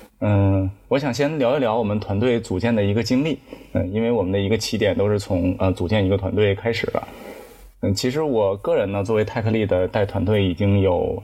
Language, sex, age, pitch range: Chinese, male, 20-39, 95-115 Hz